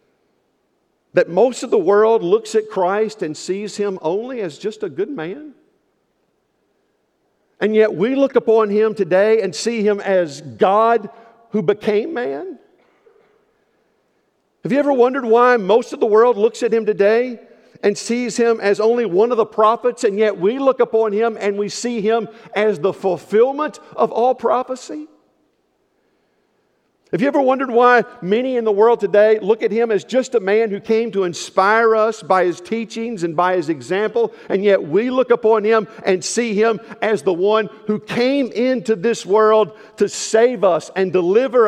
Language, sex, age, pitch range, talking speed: English, male, 50-69, 190-235 Hz, 175 wpm